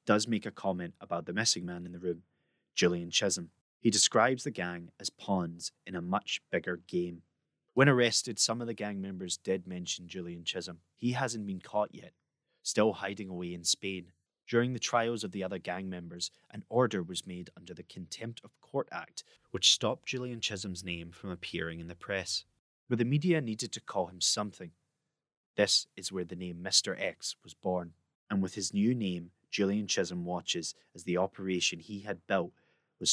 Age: 20-39